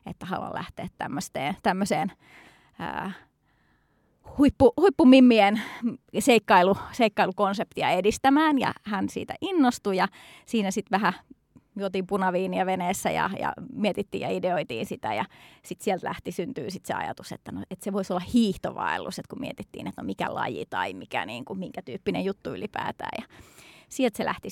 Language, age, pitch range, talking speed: Finnish, 30-49, 195-255 Hz, 140 wpm